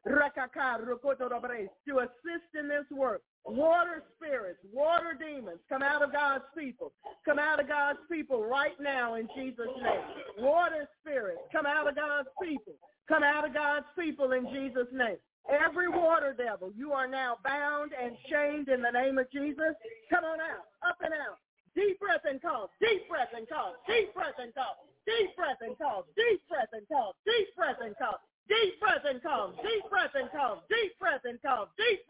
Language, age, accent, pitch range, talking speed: English, 40-59, American, 265-340 Hz, 180 wpm